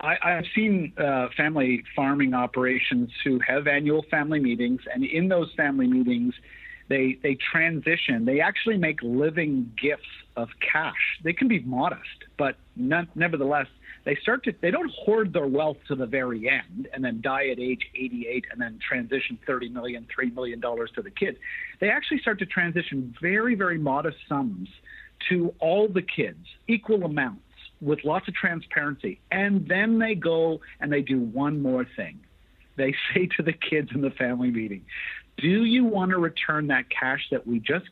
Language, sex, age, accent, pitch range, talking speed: English, male, 50-69, American, 135-205 Hz, 170 wpm